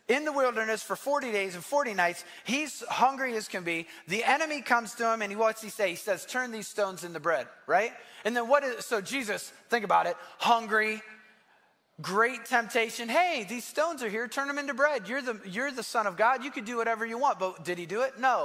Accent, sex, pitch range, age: American, male, 195-260 Hz, 20-39